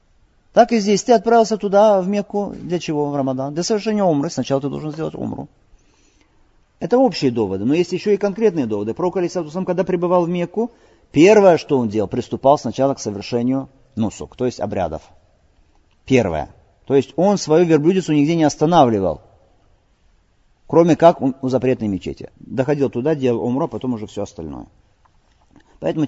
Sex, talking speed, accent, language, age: male, 165 wpm, native, Russian, 40-59